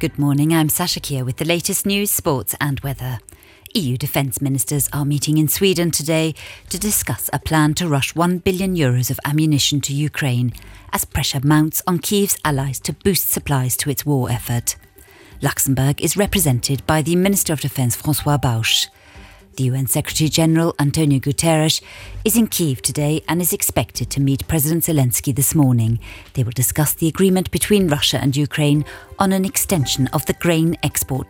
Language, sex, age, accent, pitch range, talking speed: English, female, 40-59, British, 125-155 Hz, 175 wpm